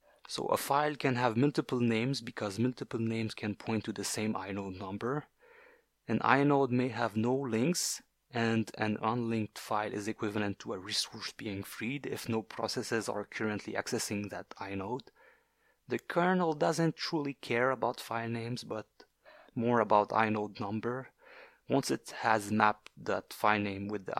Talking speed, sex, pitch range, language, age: 160 wpm, male, 105-135 Hz, English, 30-49